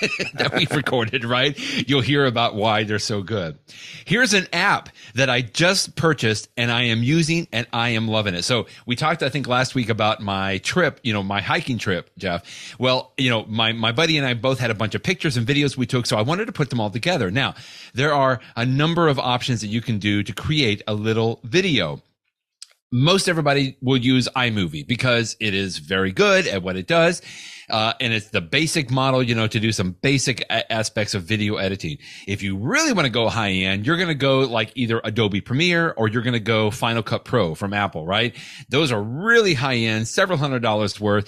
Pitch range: 110-145 Hz